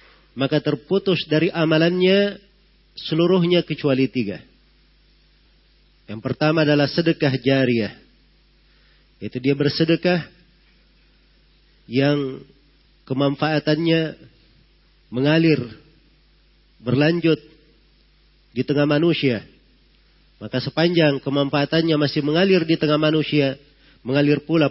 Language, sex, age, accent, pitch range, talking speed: Indonesian, male, 40-59, native, 135-165 Hz, 80 wpm